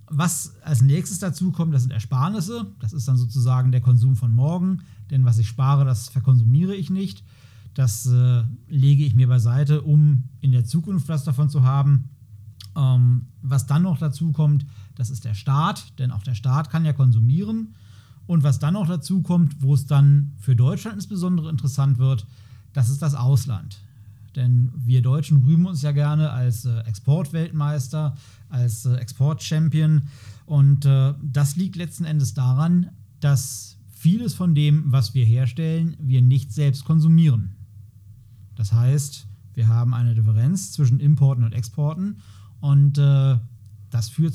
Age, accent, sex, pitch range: 40-59, German, male, 120-150 Hz